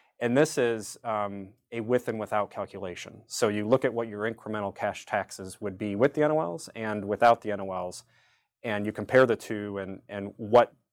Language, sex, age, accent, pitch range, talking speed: English, male, 30-49, American, 100-115 Hz, 190 wpm